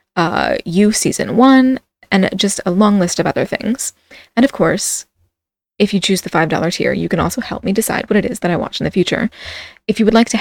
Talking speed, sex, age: 240 wpm, female, 20-39